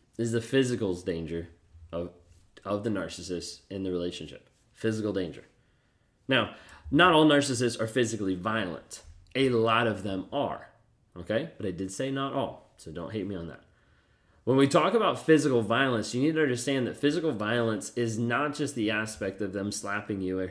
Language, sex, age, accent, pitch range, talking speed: English, male, 30-49, American, 105-130 Hz, 180 wpm